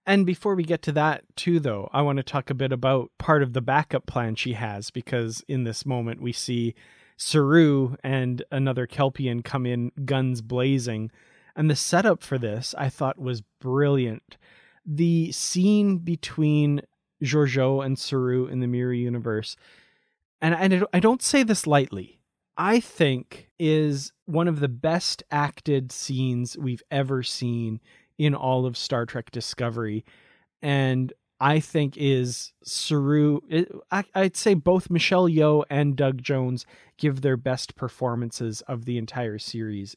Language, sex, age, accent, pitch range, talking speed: English, male, 30-49, American, 120-150 Hz, 155 wpm